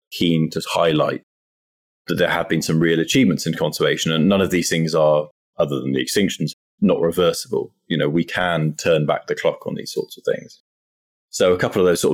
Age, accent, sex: 20-39, British, male